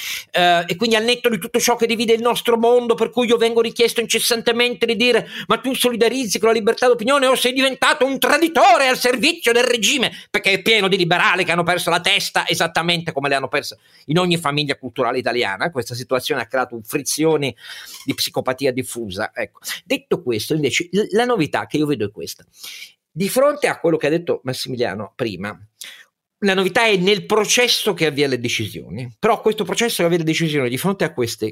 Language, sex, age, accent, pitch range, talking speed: Italian, male, 50-69, native, 145-235 Hz, 195 wpm